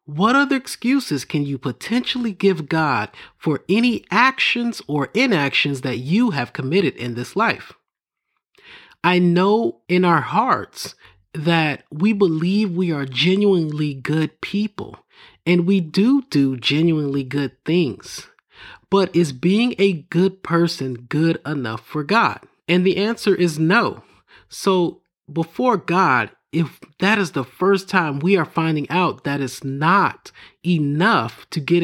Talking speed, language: 140 wpm, English